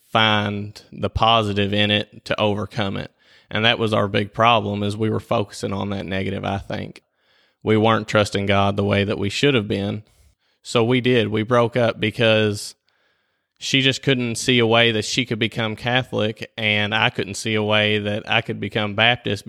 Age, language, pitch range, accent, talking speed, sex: 20-39, English, 105-115 Hz, American, 195 wpm, male